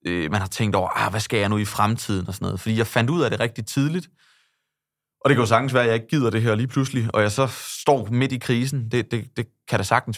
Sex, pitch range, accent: male, 105-125 Hz, native